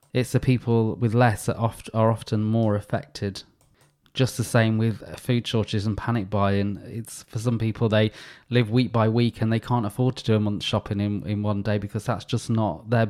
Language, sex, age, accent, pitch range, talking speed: English, male, 20-39, British, 105-125 Hz, 215 wpm